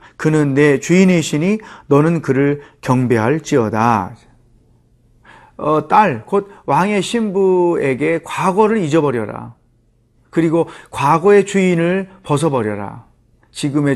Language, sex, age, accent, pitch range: Korean, male, 40-59, native, 125-175 Hz